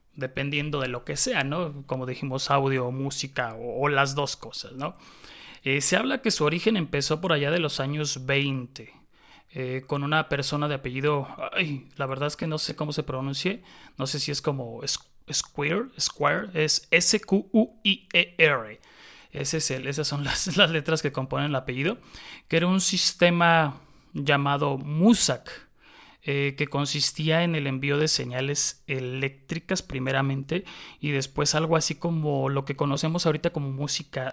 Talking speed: 155 wpm